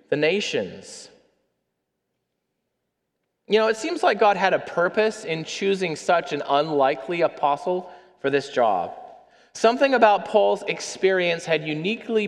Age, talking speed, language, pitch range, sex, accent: 30-49, 125 wpm, English, 165-220 Hz, male, American